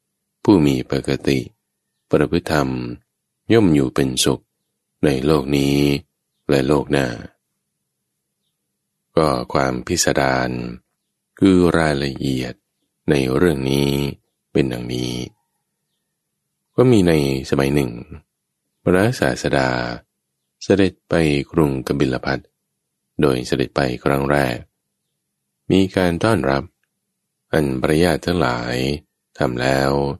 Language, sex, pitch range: English, male, 65-80 Hz